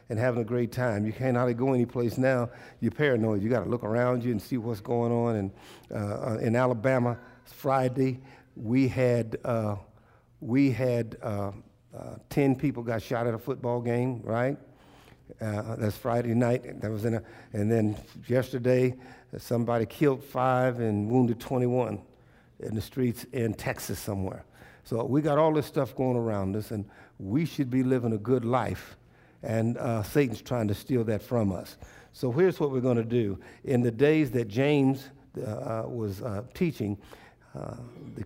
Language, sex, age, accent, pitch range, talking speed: English, male, 60-79, American, 110-130 Hz, 175 wpm